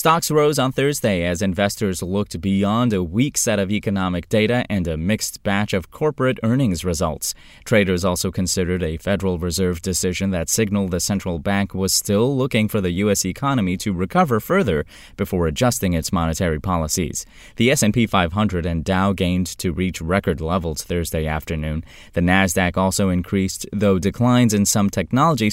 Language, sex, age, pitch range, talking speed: English, male, 20-39, 90-120 Hz, 165 wpm